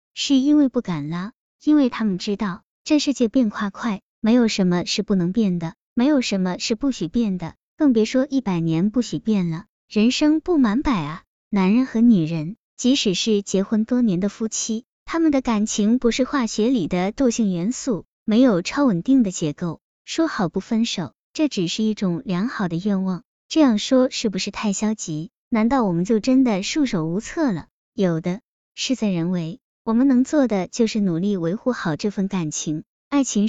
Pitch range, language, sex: 185-250 Hz, Chinese, male